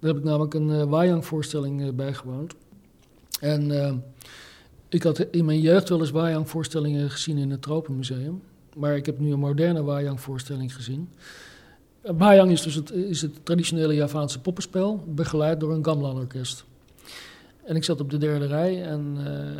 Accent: Dutch